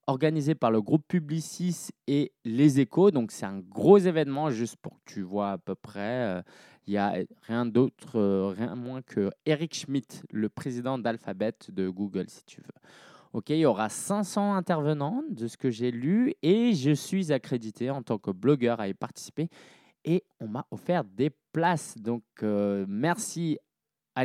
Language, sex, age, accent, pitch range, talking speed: French, male, 20-39, French, 110-175 Hz, 175 wpm